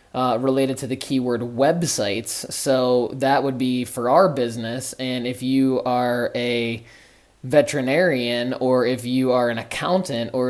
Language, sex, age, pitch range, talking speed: English, male, 20-39, 120-135 Hz, 150 wpm